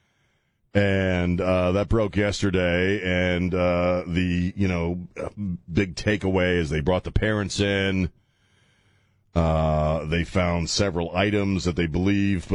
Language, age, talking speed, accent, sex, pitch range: English, 40-59, 125 wpm, American, male, 90-110 Hz